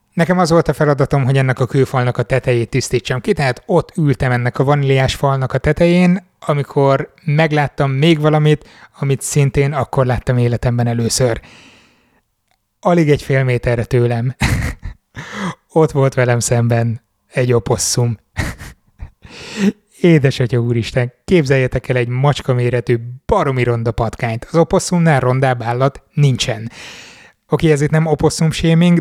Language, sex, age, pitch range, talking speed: Hungarian, male, 20-39, 125-150 Hz, 130 wpm